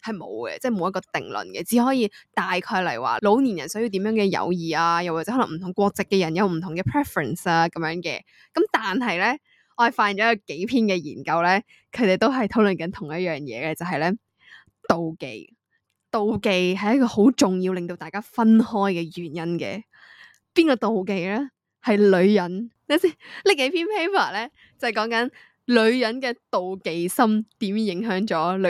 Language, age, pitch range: Chinese, 10-29, 180-240 Hz